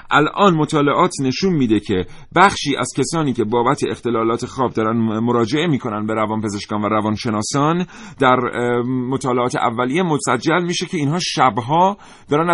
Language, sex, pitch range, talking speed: Persian, male, 115-155 Hz, 135 wpm